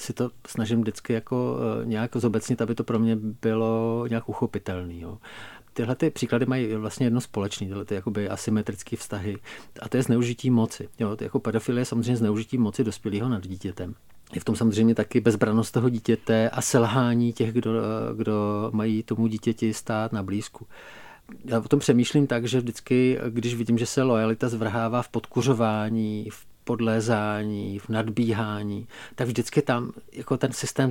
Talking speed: 165 wpm